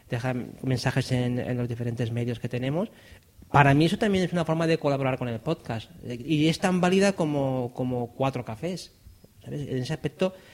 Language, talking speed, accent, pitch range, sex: Spanish, 190 wpm, Spanish, 125-165 Hz, male